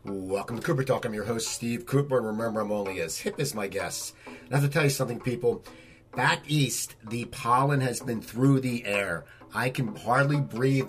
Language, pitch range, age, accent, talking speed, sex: English, 110-140 Hz, 40-59, American, 215 wpm, male